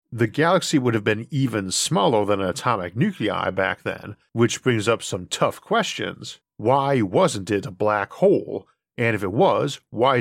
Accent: American